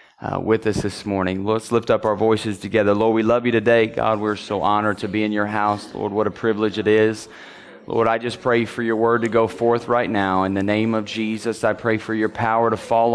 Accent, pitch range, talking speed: American, 100-115 Hz, 250 wpm